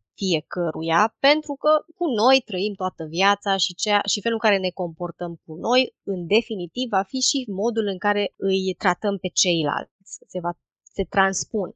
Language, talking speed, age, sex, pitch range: Romanian, 175 wpm, 20-39, female, 180-230 Hz